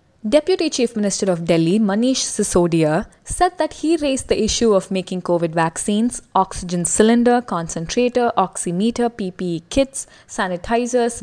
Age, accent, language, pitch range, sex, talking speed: 20-39, Indian, English, 185-255 Hz, female, 130 wpm